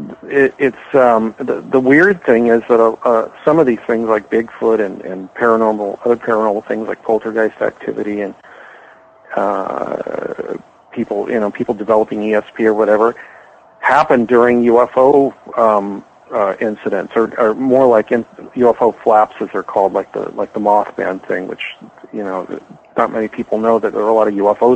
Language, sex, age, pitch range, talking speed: English, male, 50-69, 105-120 Hz, 170 wpm